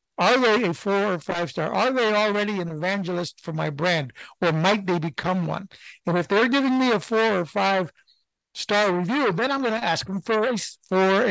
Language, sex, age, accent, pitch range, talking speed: English, male, 60-79, American, 170-220 Hz, 210 wpm